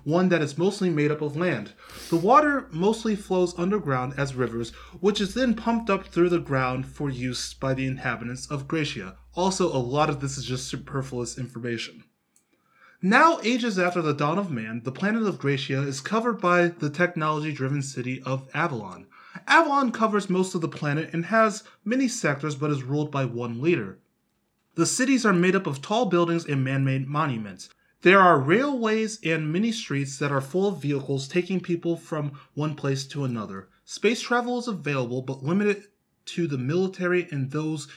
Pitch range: 135-190 Hz